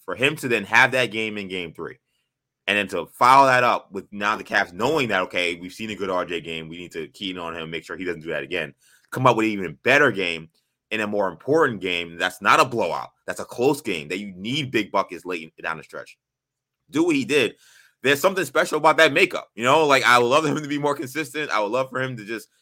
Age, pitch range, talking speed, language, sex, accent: 20-39, 95-130 Hz, 265 wpm, English, male, American